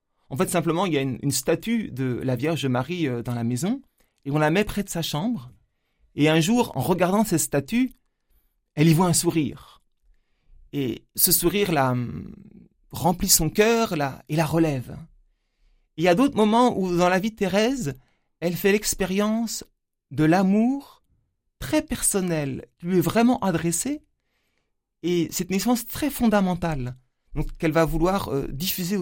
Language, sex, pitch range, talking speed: French, male, 140-195 Hz, 160 wpm